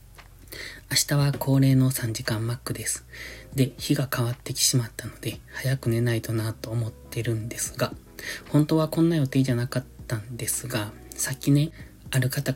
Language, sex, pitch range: Japanese, male, 115-135 Hz